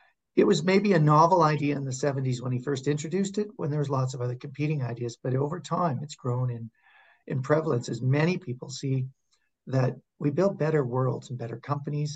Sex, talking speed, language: male, 205 wpm, English